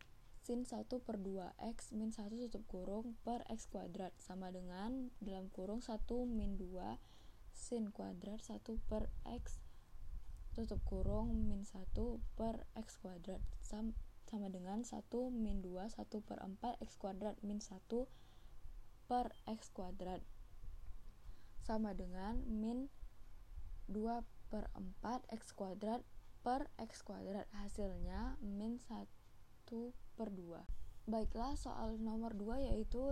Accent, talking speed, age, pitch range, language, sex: native, 120 wpm, 10-29, 190-235 Hz, Indonesian, female